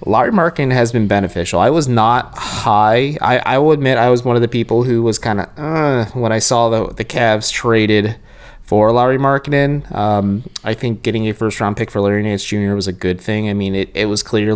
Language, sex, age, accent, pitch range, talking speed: English, male, 20-39, American, 95-120 Hz, 225 wpm